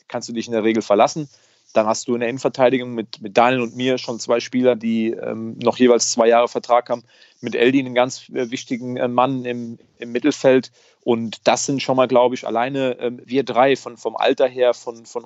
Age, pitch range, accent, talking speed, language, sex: 30-49, 115-135 Hz, German, 225 wpm, German, male